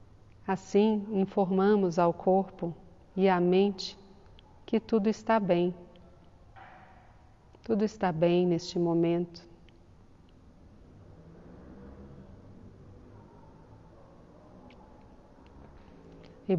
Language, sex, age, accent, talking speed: Portuguese, female, 40-59, Brazilian, 60 wpm